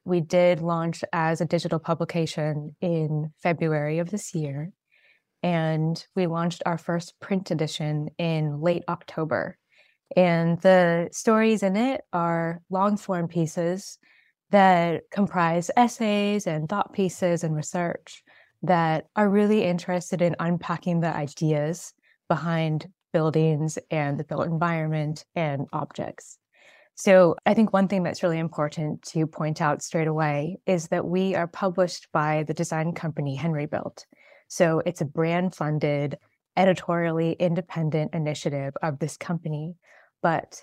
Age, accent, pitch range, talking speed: 20-39, American, 160-185 Hz, 130 wpm